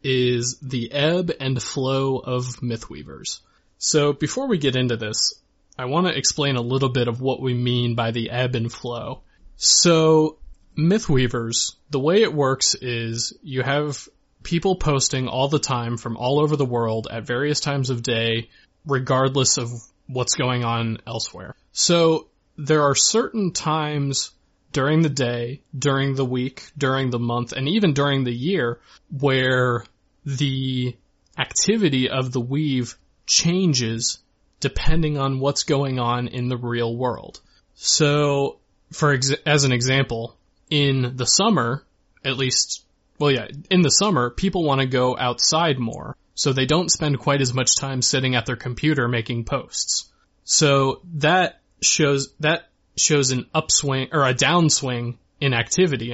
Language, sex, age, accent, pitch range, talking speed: English, male, 20-39, American, 120-150 Hz, 150 wpm